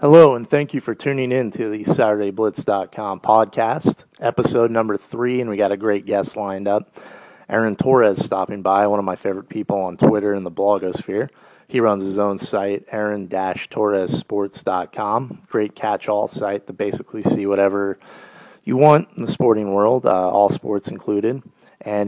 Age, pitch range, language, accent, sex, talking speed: 30-49, 100-115 Hz, English, American, male, 165 wpm